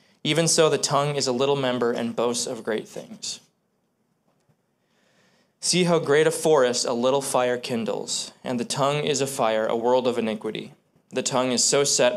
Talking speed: 180 wpm